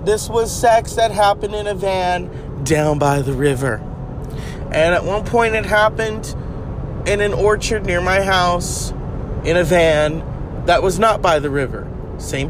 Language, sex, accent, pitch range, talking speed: English, male, American, 145-205 Hz, 165 wpm